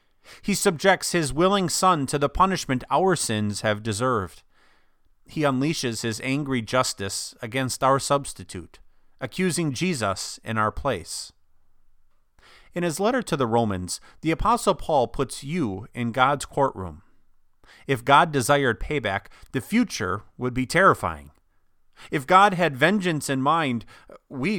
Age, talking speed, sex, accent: 40-59, 135 wpm, male, American